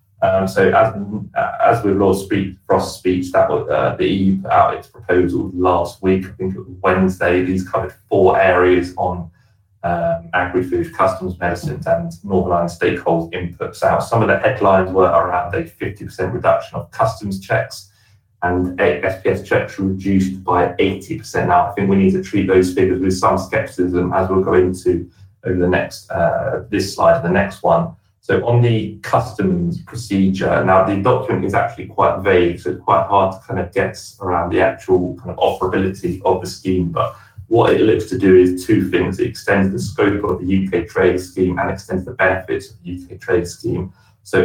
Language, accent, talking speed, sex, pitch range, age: English, British, 190 wpm, male, 90-100 Hz, 30-49